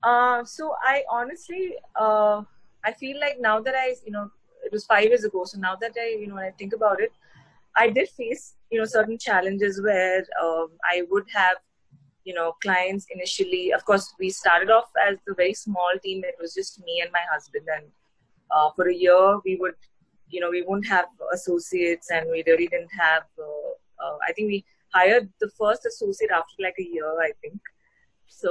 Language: English